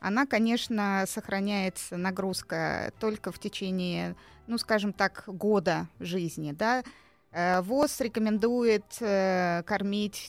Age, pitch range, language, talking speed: 20-39, 180-220 Hz, Russian, 95 wpm